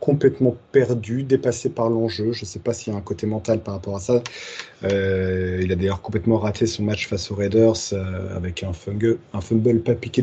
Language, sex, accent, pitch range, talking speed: French, male, French, 105-125 Hz, 225 wpm